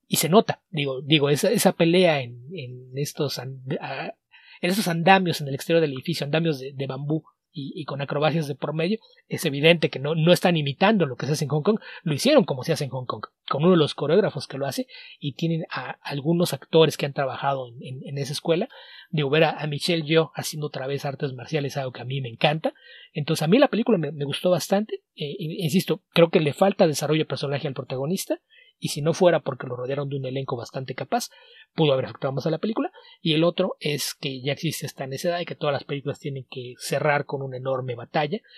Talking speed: 240 wpm